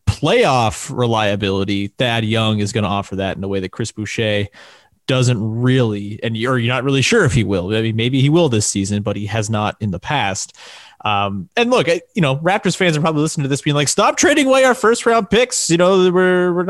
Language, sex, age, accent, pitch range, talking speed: English, male, 30-49, American, 115-160 Hz, 235 wpm